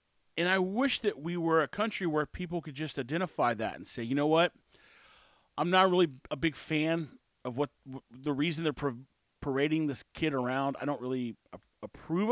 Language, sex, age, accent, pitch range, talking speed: English, male, 40-59, American, 150-200 Hz, 185 wpm